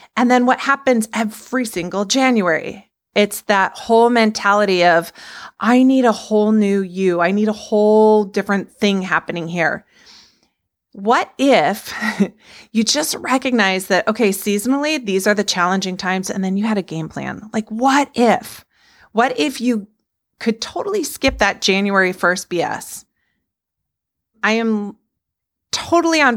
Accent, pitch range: American, 185-240 Hz